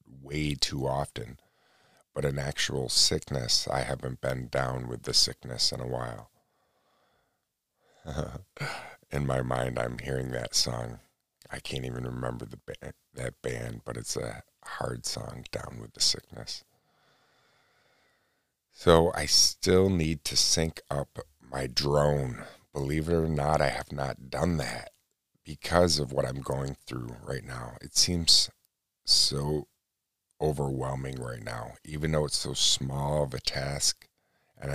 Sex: male